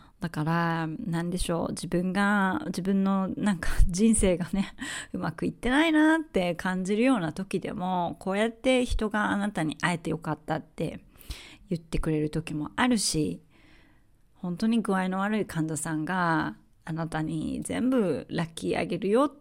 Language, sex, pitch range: Japanese, female, 165-200 Hz